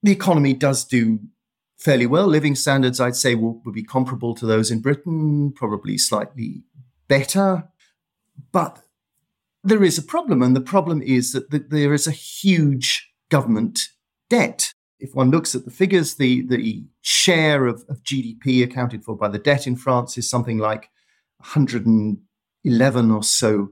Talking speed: 155 wpm